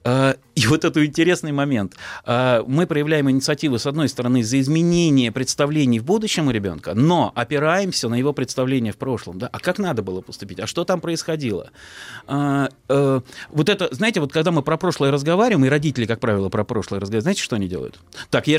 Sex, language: male, Russian